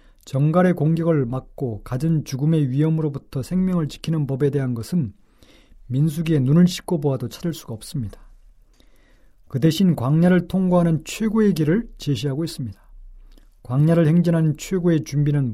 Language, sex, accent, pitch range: Korean, male, native, 130-170 Hz